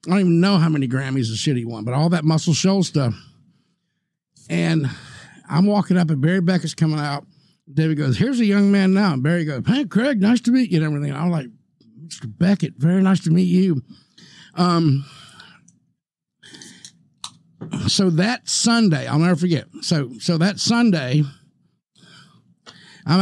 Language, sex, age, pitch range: English, male, 50-69, 160-215 Hz